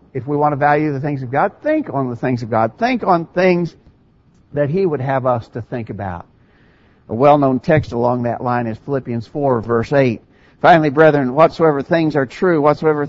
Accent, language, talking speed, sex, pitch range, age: American, English, 200 wpm, male, 125-160 Hz, 60-79